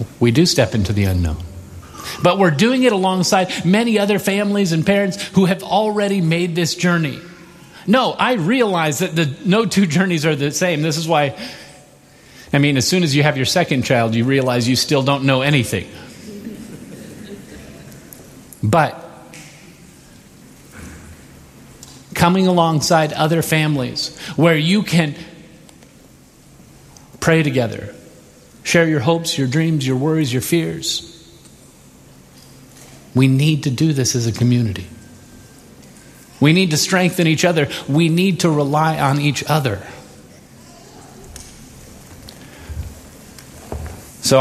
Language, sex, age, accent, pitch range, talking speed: English, male, 40-59, American, 115-170 Hz, 125 wpm